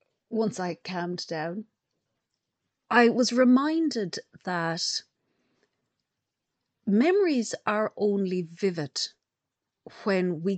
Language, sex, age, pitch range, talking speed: English, female, 40-59, 170-220 Hz, 80 wpm